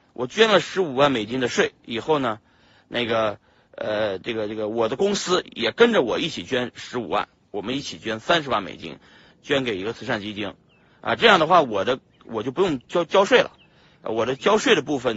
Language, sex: Chinese, male